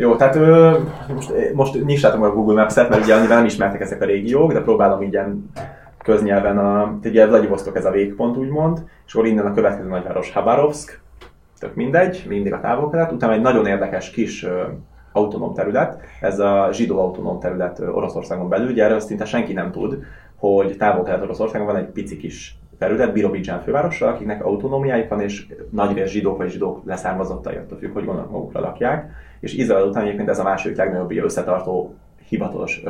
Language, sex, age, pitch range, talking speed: Hungarian, male, 20-39, 100-130 Hz, 170 wpm